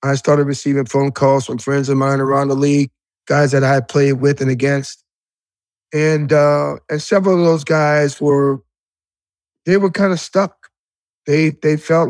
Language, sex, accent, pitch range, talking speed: English, male, American, 145-180 Hz, 180 wpm